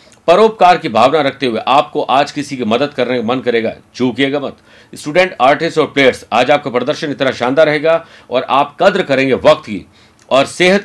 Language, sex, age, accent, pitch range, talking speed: Hindi, male, 50-69, native, 120-155 Hz, 190 wpm